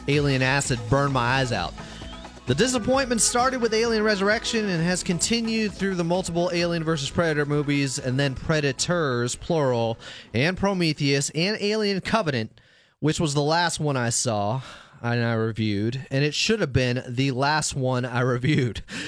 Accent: American